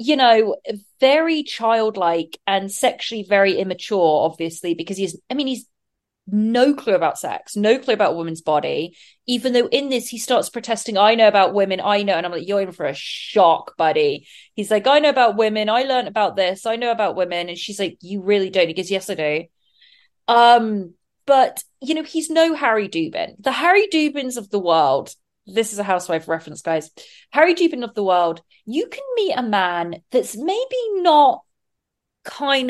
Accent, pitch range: British, 190-260 Hz